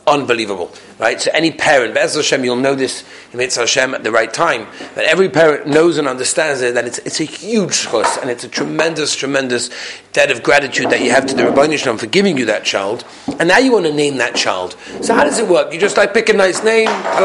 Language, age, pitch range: English, 40-59, 145-205 Hz